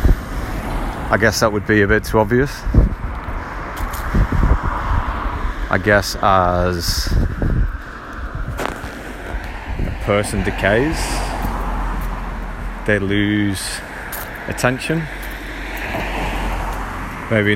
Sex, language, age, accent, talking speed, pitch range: male, English, 30-49, British, 65 wpm, 80-115 Hz